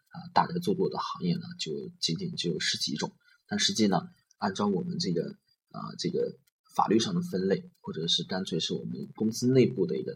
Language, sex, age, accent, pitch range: Chinese, male, 20-39, native, 130-200 Hz